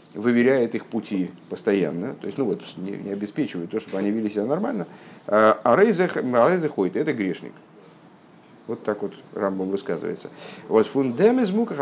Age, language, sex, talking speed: 50-69, Russian, male, 155 wpm